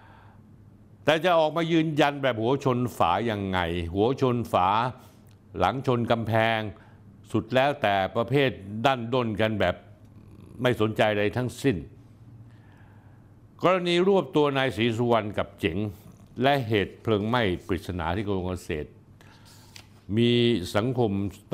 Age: 60-79